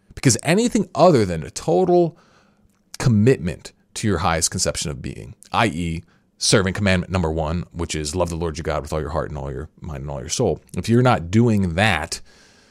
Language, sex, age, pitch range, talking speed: English, male, 30-49, 85-105 Hz, 200 wpm